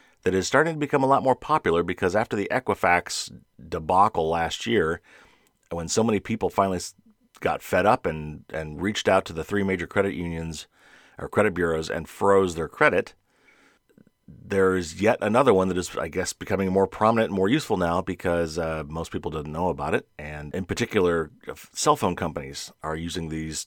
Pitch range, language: 80-95 Hz, English